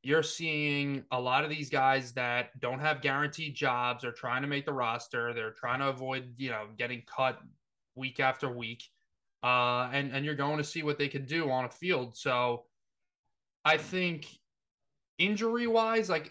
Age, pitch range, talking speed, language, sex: 20-39, 125-155 Hz, 180 wpm, English, male